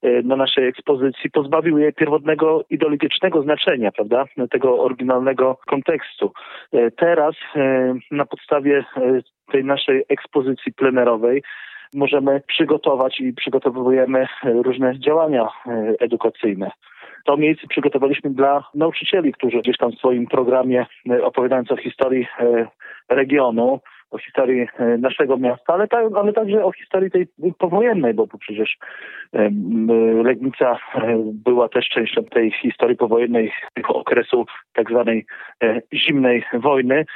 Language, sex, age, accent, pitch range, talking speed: Polish, male, 40-59, native, 125-155 Hz, 110 wpm